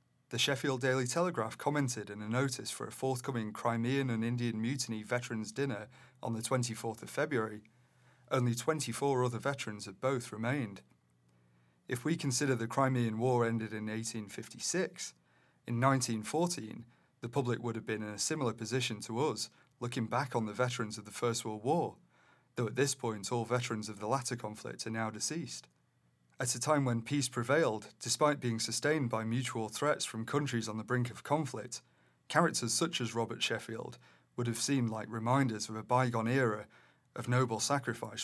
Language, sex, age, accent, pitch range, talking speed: English, male, 30-49, British, 110-130 Hz, 175 wpm